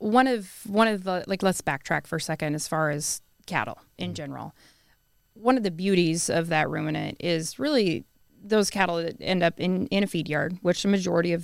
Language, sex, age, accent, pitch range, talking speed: English, female, 20-39, American, 155-185 Hz, 210 wpm